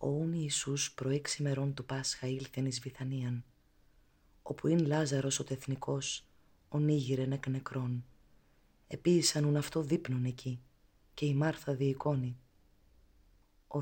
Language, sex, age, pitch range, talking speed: Greek, female, 30-49, 120-145 Hz, 115 wpm